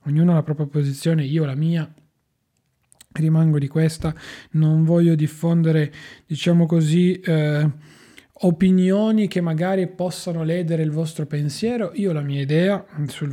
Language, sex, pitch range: Italian, male, 140-165 Hz